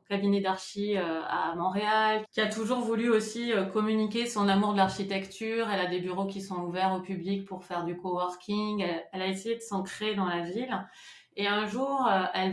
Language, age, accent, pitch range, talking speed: French, 30-49, French, 180-210 Hz, 185 wpm